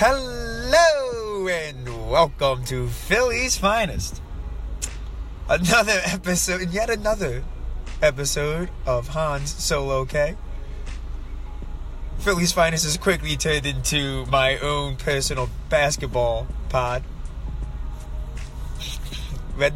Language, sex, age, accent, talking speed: English, male, 20-39, American, 80 wpm